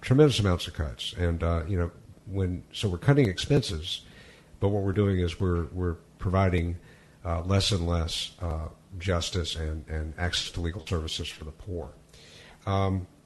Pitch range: 85-100 Hz